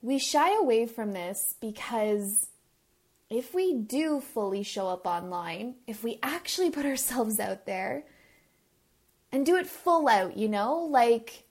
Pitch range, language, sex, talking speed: 225-285 Hz, English, female, 145 wpm